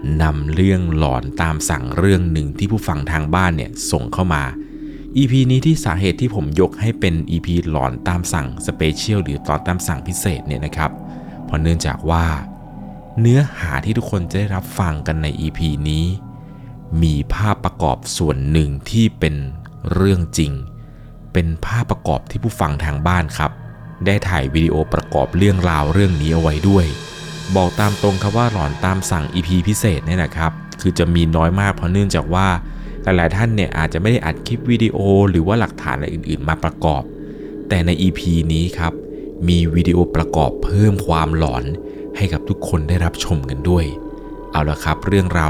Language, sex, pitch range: Thai, male, 80-100 Hz